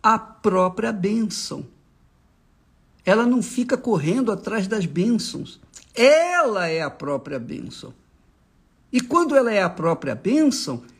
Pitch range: 205-290 Hz